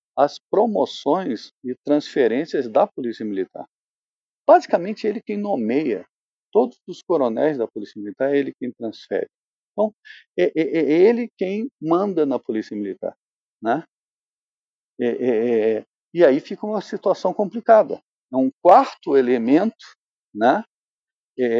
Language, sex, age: Portuguese, male, 50-69